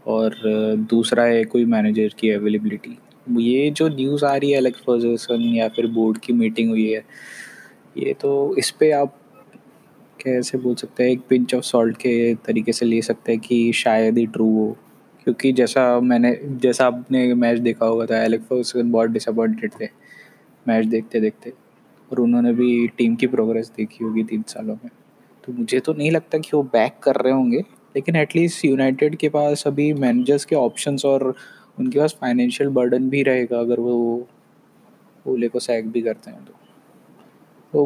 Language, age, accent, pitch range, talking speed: Hindi, 20-39, native, 120-140 Hz, 175 wpm